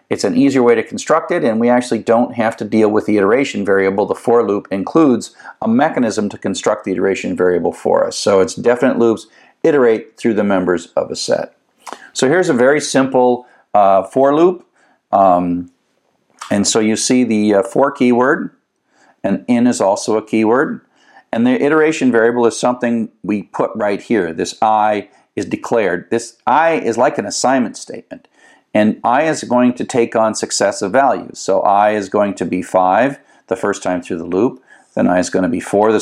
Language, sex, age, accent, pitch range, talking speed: English, male, 50-69, American, 95-125 Hz, 190 wpm